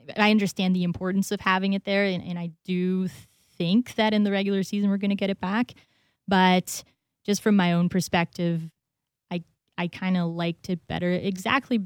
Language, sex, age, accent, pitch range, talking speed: English, female, 20-39, American, 170-190 Hz, 190 wpm